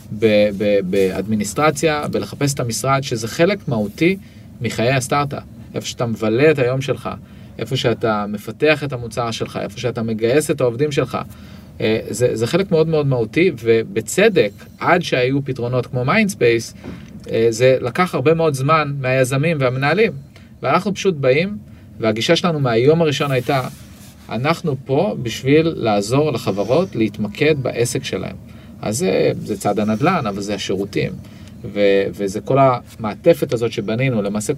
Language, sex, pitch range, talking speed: Hebrew, male, 110-150 Hz, 135 wpm